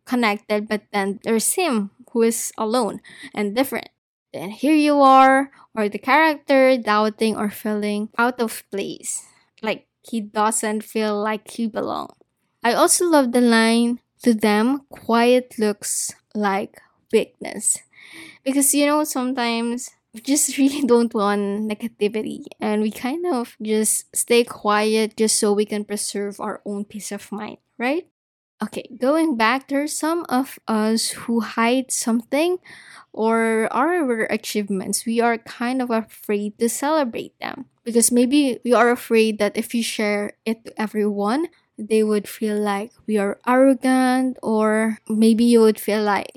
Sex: female